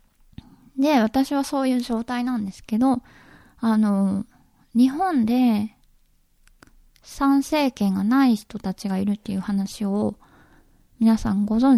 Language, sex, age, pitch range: Japanese, female, 20-39, 210-250 Hz